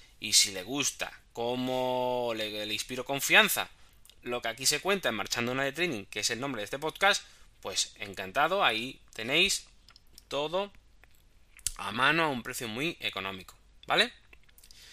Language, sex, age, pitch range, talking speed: Spanish, male, 20-39, 125-180 Hz, 155 wpm